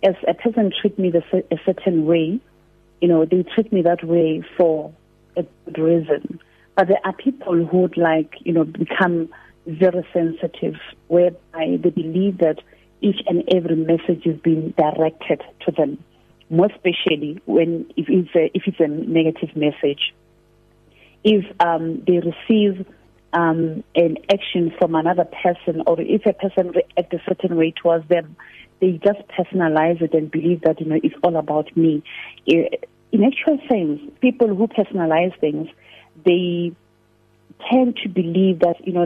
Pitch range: 160-185 Hz